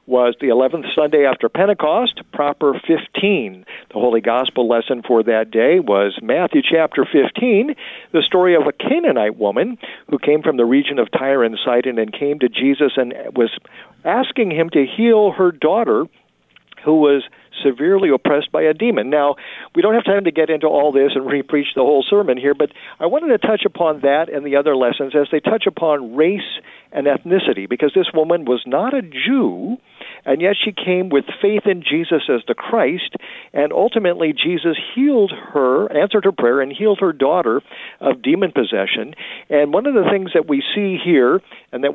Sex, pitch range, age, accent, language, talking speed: male, 140-200 Hz, 50-69, American, English, 185 wpm